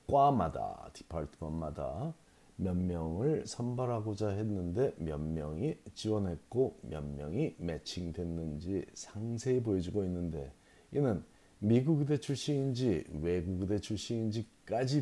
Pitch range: 85-115 Hz